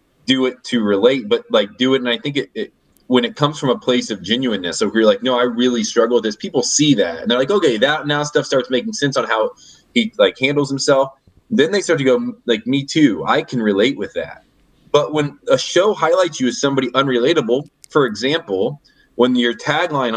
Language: English